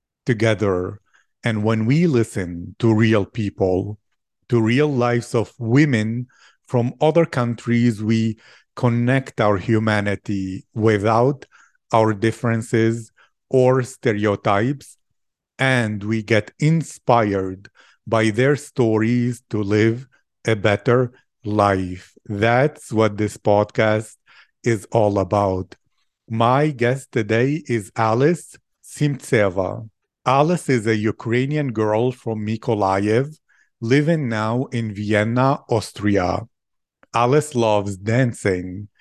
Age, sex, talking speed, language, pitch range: 50-69, male, 100 wpm, English, 105-125 Hz